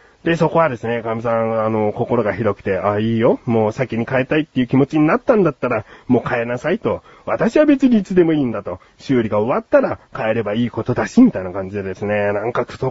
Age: 30-49